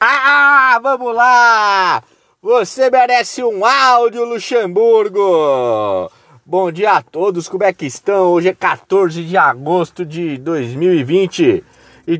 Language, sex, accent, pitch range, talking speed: Portuguese, male, Brazilian, 115-185 Hz, 120 wpm